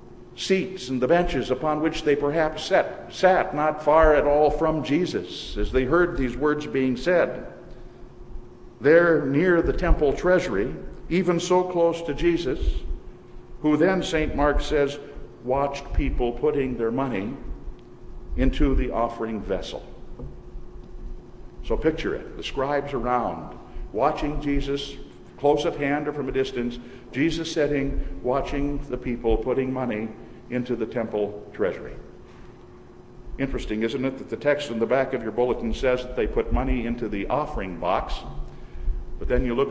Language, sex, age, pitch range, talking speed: English, male, 60-79, 120-160 Hz, 150 wpm